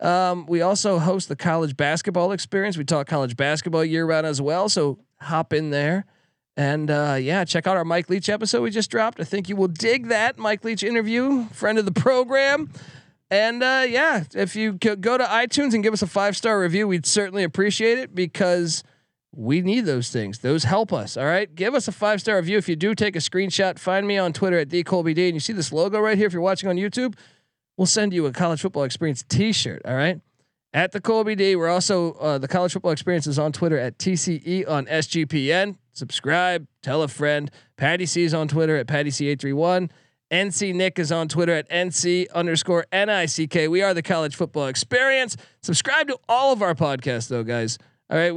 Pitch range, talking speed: 150-200 Hz, 220 wpm